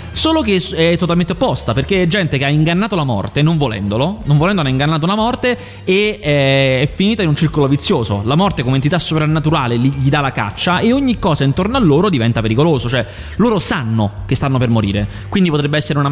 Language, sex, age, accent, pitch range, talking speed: Italian, male, 20-39, native, 120-160 Hz, 210 wpm